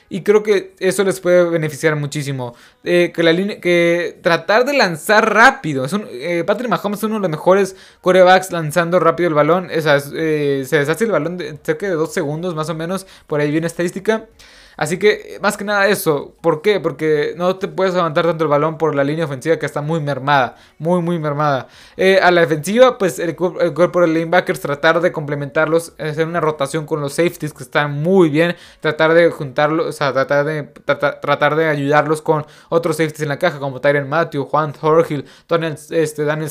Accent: Mexican